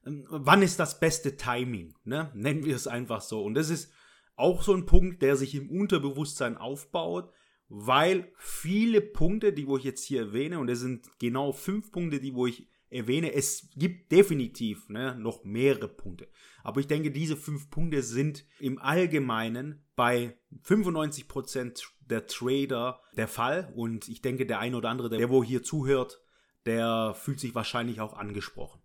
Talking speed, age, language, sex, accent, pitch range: 170 wpm, 30-49, German, male, German, 125-155 Hz